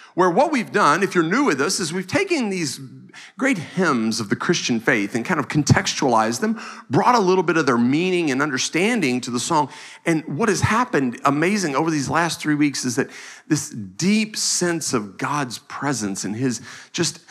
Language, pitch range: English, 120-185 Hz